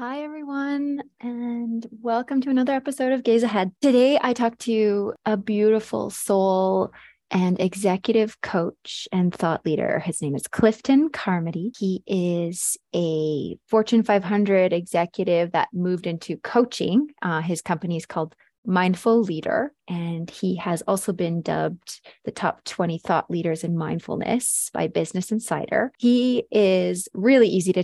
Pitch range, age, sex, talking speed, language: 175-230 Hz, 20-39, female, 140 wpm, English